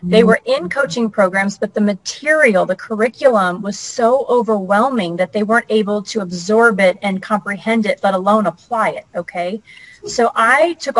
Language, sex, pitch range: English, female, 190-230 Hz